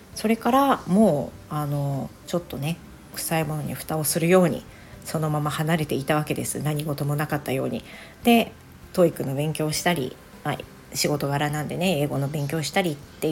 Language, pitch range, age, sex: Japanese, 150-180 Hz, 40-59, female